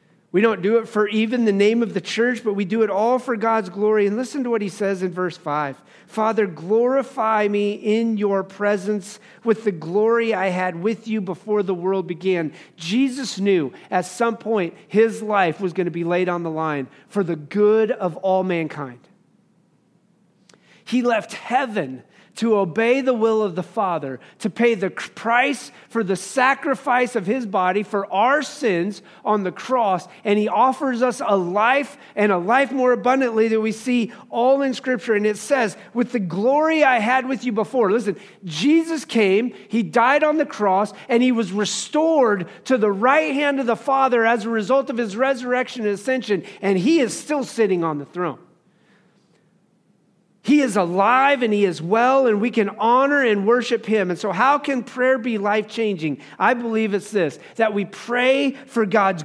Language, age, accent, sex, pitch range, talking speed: English, 40-59, American, male, 195-245 Hz, 185 wpm